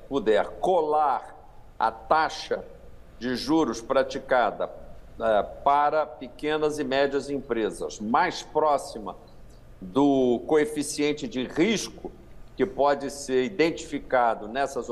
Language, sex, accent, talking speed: English, male, Brazilian, 95 wpm